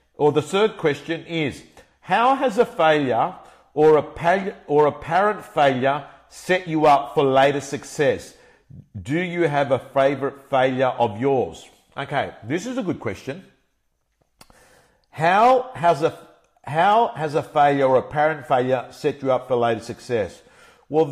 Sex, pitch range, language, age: male, 120-155 Hz, English, 50-69